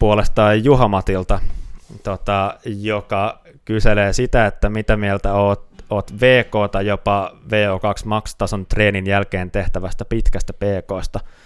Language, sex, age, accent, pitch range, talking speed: Finnish, male, 20-39, native, 90-105 Hz, 120 wpm